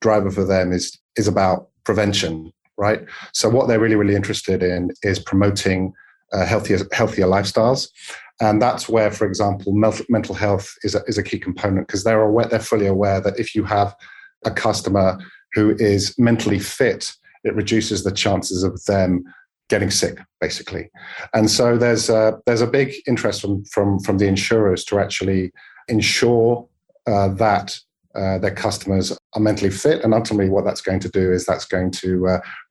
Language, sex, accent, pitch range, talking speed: English, male, British, 95-110 Hz, 175 wpm